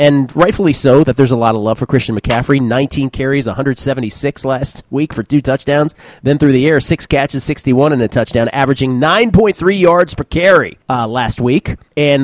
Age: 40-59